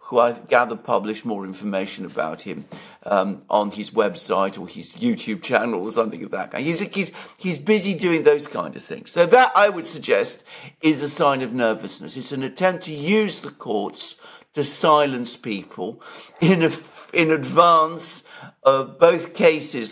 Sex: male